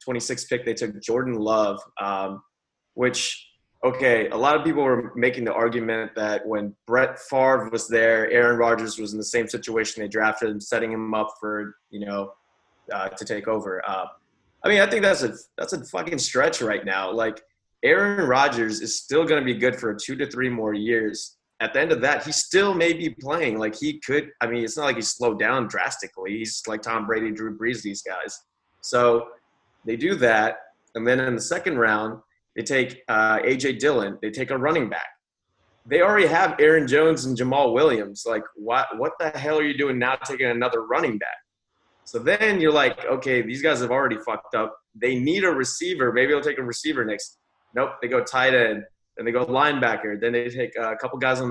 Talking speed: 205 wpm